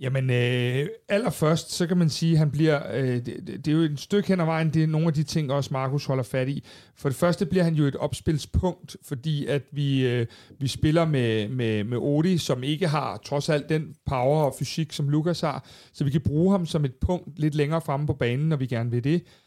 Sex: male